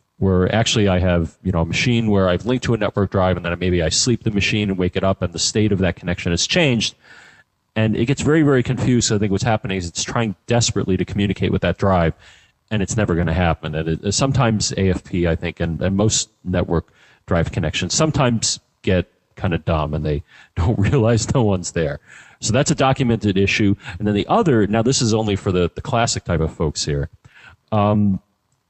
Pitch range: 85-115 Hz